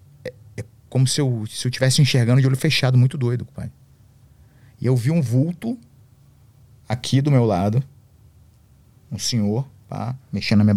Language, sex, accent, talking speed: Portuguese, male, Brazilian, 155 wpm